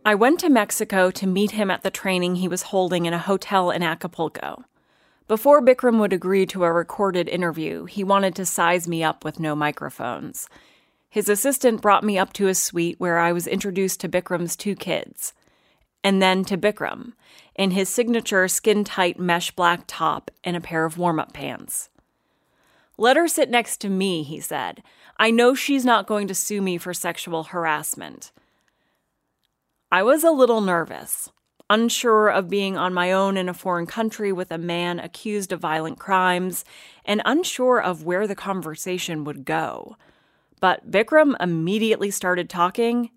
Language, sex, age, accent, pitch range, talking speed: English, female, 30-49, American, 175-215 Hz, 170 wpm